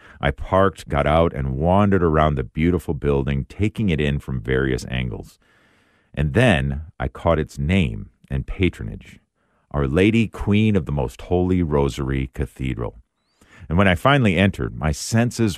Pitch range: 70-105 Hz